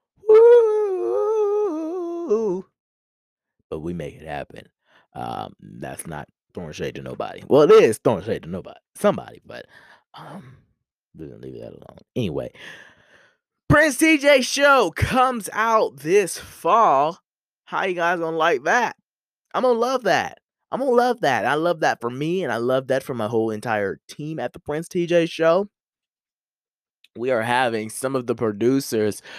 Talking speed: 150 wpm